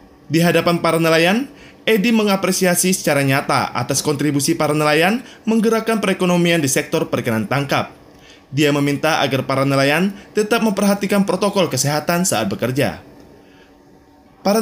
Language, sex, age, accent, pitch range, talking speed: Indonesian, male, 20-39, native, 135-195 Hz, 125 wpm